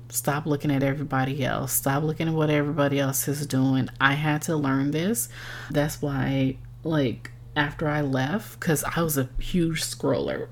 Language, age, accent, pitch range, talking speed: English, 20-39, American, 125-145 Hz, 170 wpm